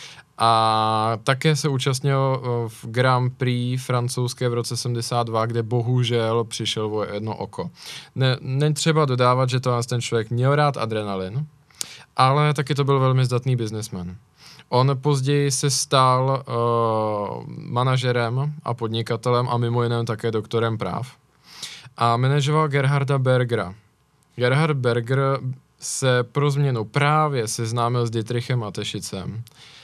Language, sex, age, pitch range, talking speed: Czech, male, 20-39, 115-130 Hz, 125 wpm